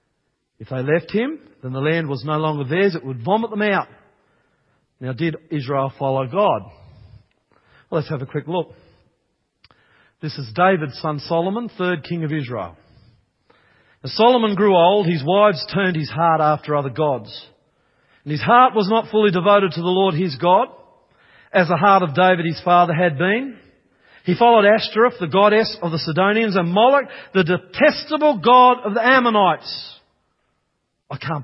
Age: 40-59